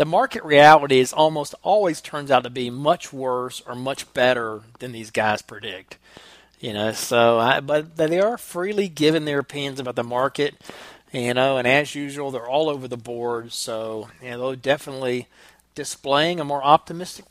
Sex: male